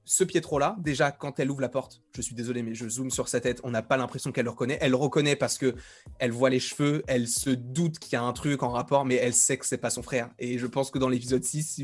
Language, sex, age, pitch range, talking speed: French, male, 20-39, 125-165 Hz, 295 wpm